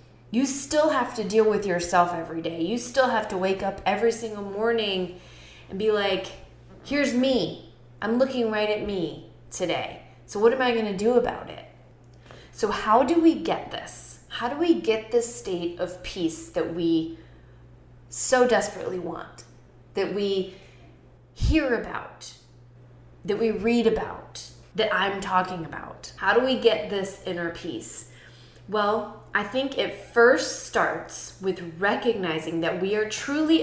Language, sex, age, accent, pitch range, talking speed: English, female, 20-39, American, 165-230 Hz, 155 wpm